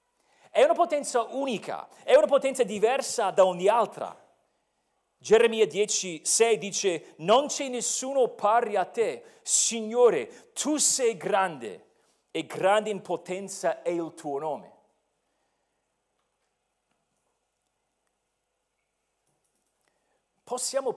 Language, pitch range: Italian, 185-270 Hz